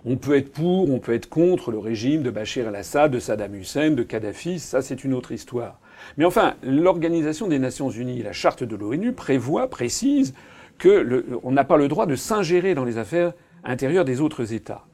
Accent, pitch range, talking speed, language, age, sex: French, 125-180 Hz, 195 wpm, French, 40-59, male